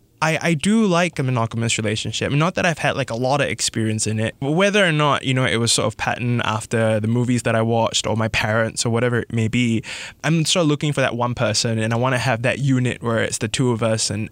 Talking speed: 275 wpm